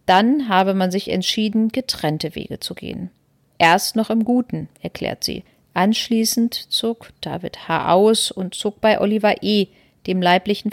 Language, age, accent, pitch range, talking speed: German, 40-59, German, 185-225 Hz, 150 wpm